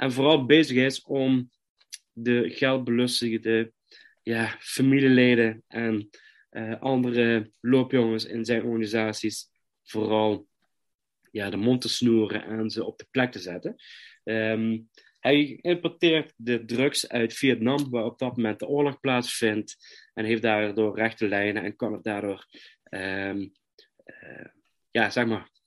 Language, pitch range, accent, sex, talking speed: Dutch, 110-130 Hz, Dutch, male, 115 wpm